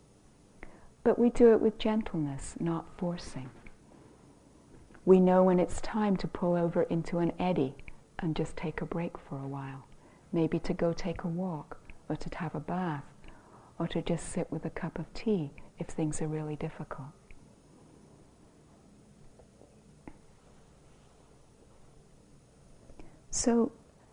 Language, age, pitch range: English, 40-59, 155-195 Hz